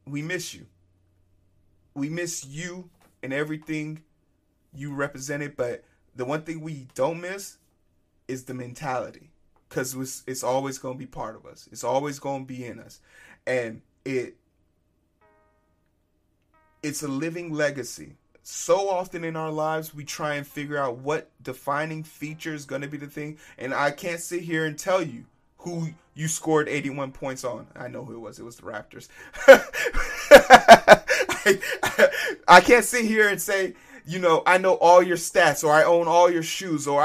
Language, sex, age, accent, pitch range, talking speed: English, male, 30-49, American, 130-170 Hz, 170 wpm